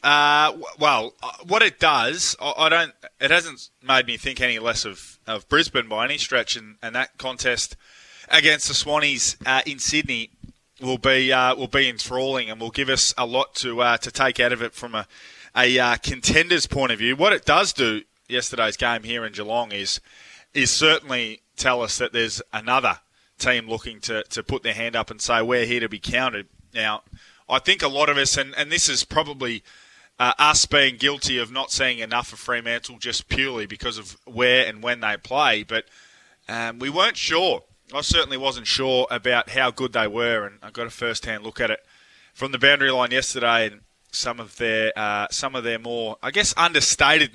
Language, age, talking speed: English, 20-39, 200 wpm